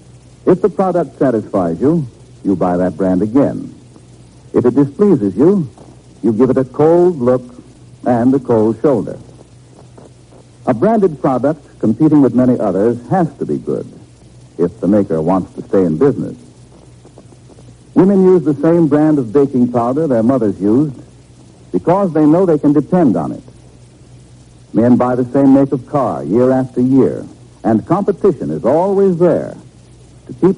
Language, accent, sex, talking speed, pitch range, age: English, American, male, 155 wpm, 115-155 Hz, 70-89